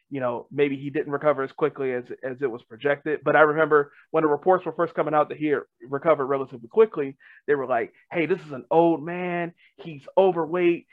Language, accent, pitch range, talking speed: English, American, 140-180 Hz, 215 wpm